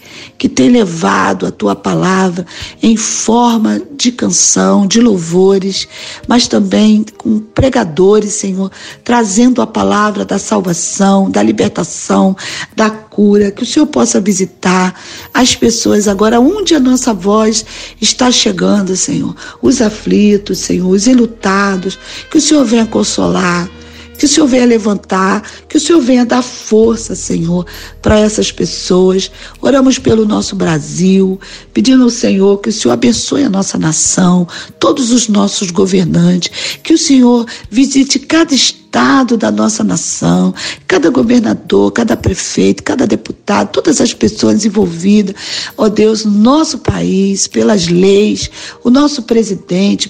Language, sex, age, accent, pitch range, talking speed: Portuguese, female, 50-69, Brazilian, 190-245 Hz, 135 wpm